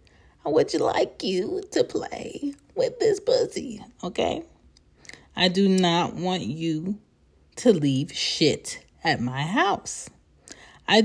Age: 30-49